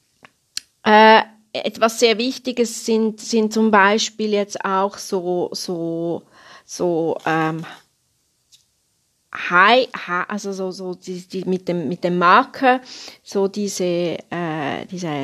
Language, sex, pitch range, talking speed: German, female, 180-225 Hz, 115 wpm